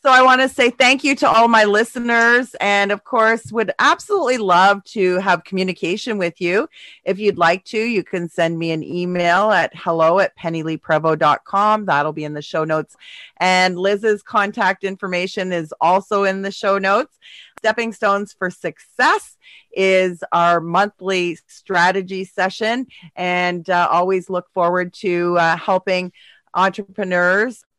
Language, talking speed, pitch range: English, 150 wpm, 175-215 Hz